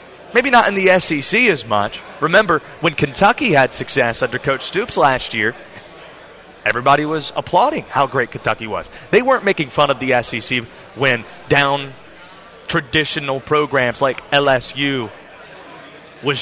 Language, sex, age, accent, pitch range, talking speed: English, male, 30-49, American, 135-165 Hz, 140 wpm